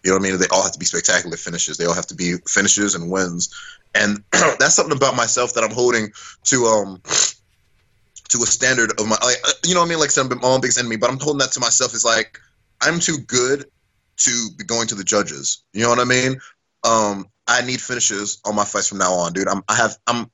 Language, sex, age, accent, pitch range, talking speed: English, male, 20-39, American, 105-130 Hz, 245 wpm